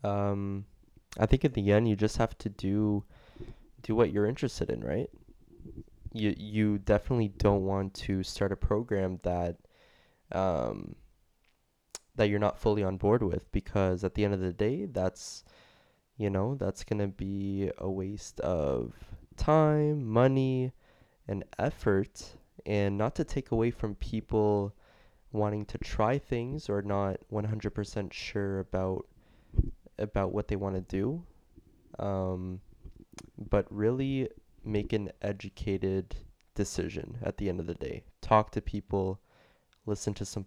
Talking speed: 145 wpm